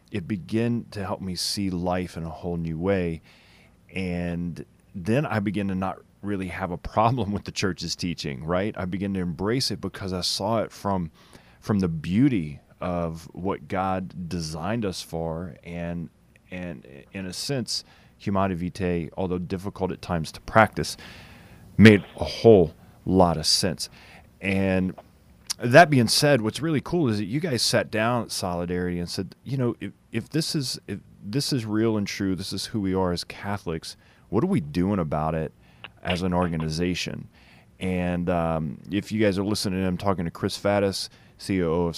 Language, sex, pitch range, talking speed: English, male, 85-110 Hz, 175 wpm